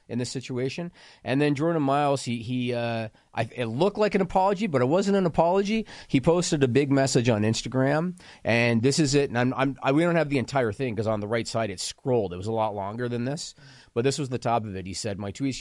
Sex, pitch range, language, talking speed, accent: male, 105-135 Hz, English, 260 wpm, American